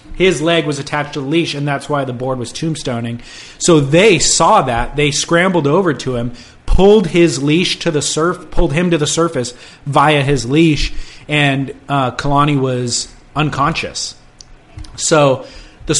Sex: male